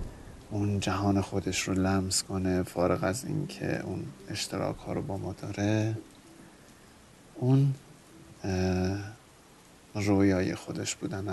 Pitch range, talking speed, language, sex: 95-110 Hz, 110 wpm, Persian, male